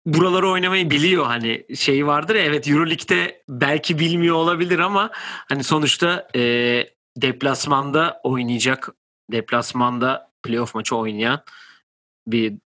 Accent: native